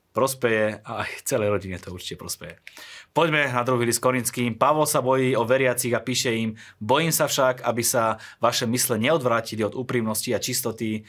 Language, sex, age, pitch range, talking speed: Slovak, male, 20-39, 100-125 Hz, 180 wpm